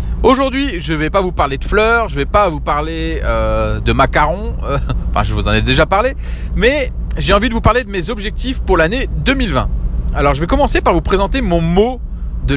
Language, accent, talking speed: French, French, 225 wpm